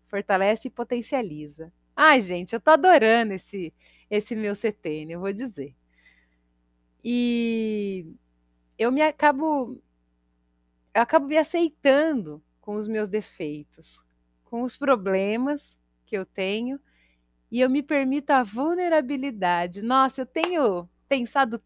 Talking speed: 120 wpm